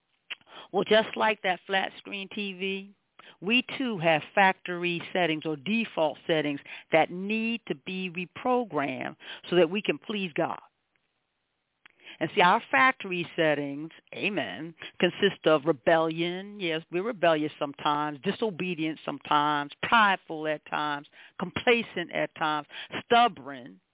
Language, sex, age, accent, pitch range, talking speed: English, female, 40-59, American, 160-205 Hz, 120 wpm